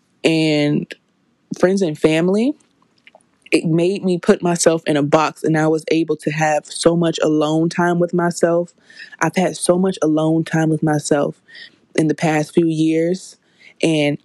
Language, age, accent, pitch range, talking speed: English, 20-39, American, 155-185 Hz, 160 wpm